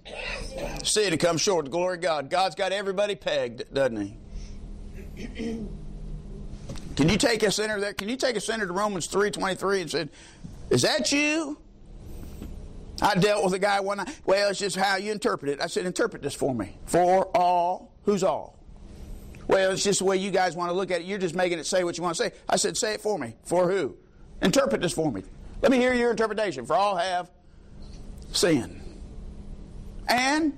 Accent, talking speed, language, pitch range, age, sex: American, 195 wpm, English, 180-240 Hz, 50-69, male